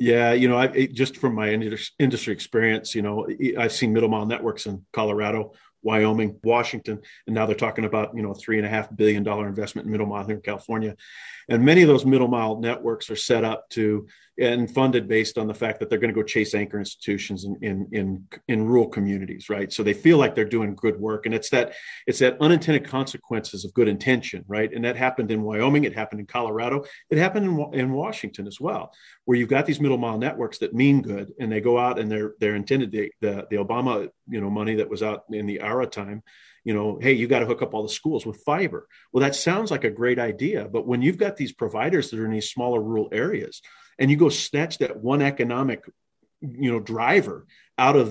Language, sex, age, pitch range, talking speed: English, male, 40-59, 110-130 Hz, 225 wpm